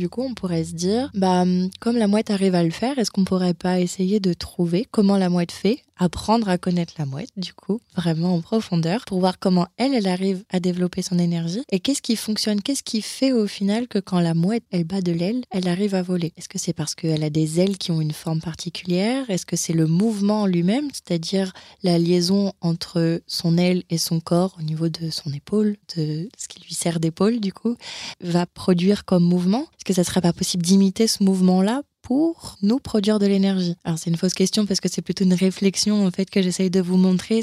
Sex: female